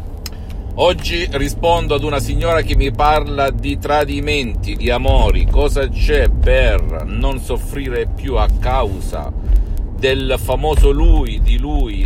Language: Italian